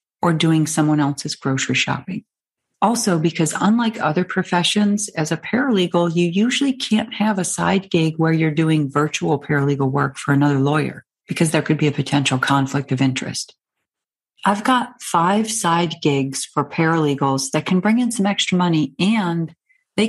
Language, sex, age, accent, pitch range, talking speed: English, female, 40-59, American, 150-190 Hz, 165 wpm